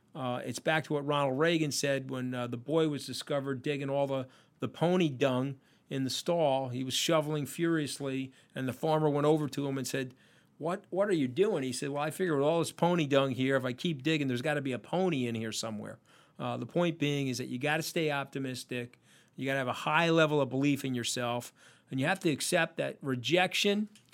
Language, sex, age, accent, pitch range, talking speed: English, male, 40-59, American, 125-155 Hz, 235 wpm